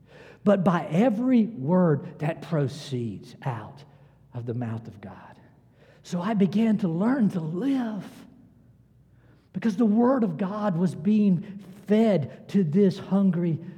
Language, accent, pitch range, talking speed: English, American, 130-175 Hz, 130 wpm